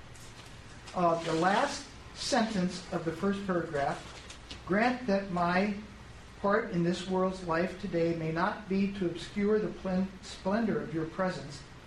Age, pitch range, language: 50-69, 180-230 Hz, English